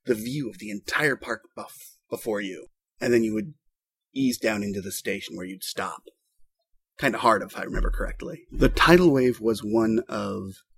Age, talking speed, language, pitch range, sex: 30-49, 190 wpm, English, 110-170 Hz, male